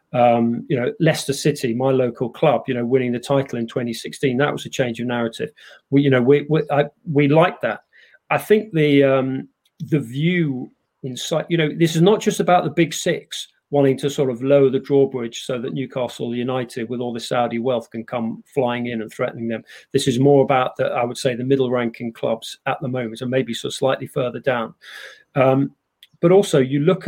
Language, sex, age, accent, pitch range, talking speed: English, male, 40-59, British, 125-150 Hz, 215 wpm